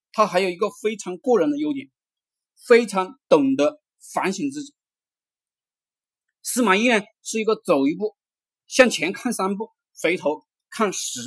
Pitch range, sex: 190-275 Hz, male